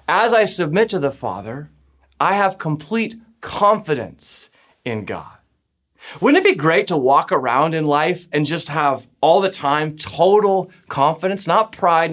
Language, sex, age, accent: English, male, 30-49, American